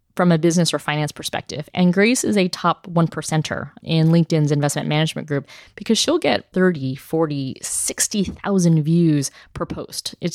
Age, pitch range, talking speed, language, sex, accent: 20-39, 155-185 Hz, 160 wpm, English, female, American